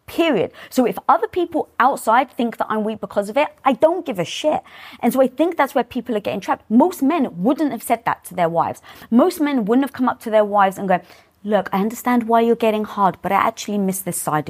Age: 20-39